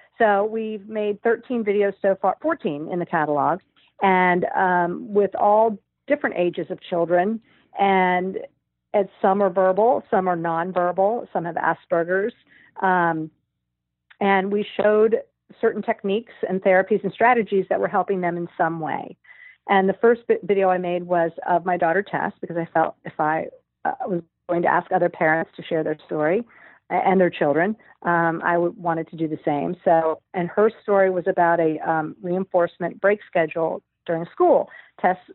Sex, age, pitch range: female, 50-69, 170-200 Hz